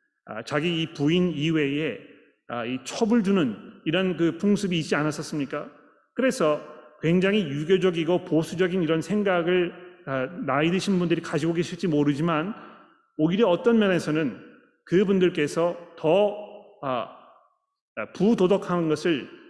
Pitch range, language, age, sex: 150-190 Hz, Korean, 30-49, male